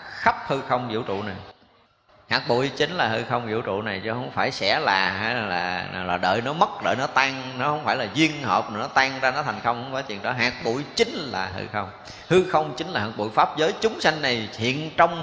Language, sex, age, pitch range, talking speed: Vietnamese, male, 20-39, 105-135 Hz, 250 wpm